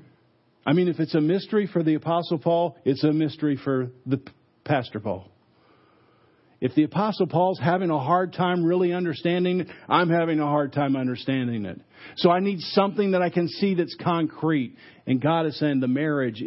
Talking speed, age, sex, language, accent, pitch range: 185 wpm, 50-69, male, English, American, 130-165 Hz